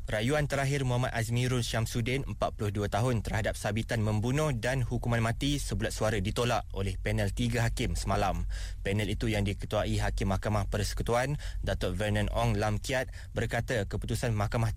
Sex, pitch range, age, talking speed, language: male, 100-120 Hz, 20-39, 140 wpm, Malay